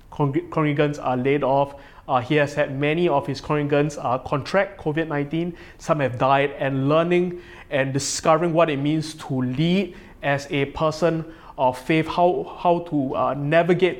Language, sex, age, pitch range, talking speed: English, male, 20-39, 140-175 Hz, 160 wpm